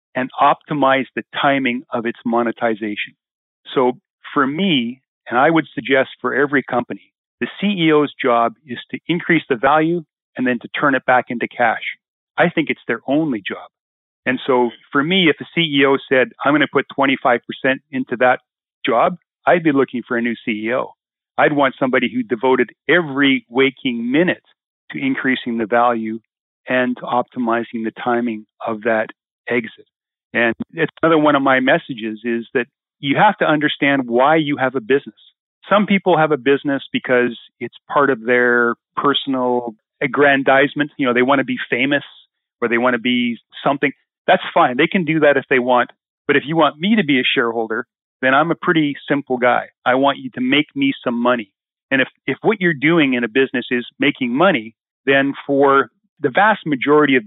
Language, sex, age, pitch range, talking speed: English, male, 40-59, 120-150 Hz, 180 wpm